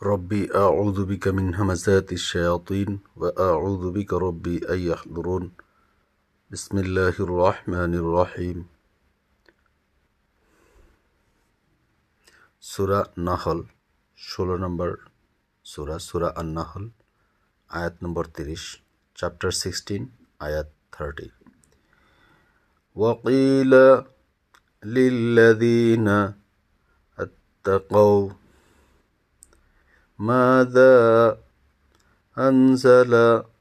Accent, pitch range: native, 90-115 Hz